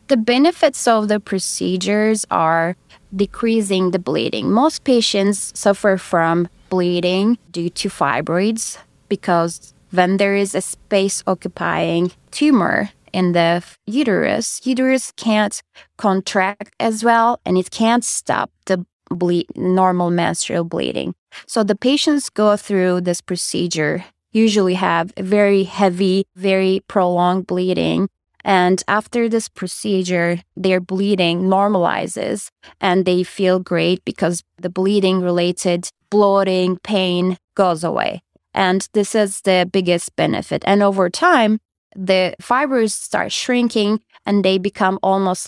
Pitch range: 180-210 Hz